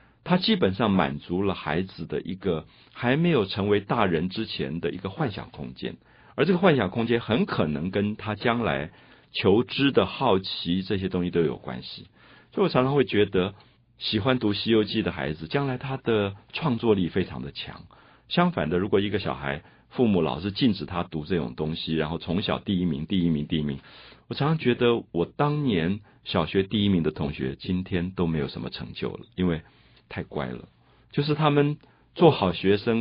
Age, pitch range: 50-69, 90-130 Hz